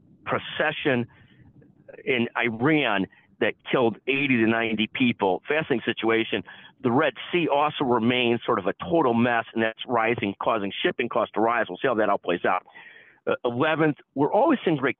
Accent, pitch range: American, 115-150 Hz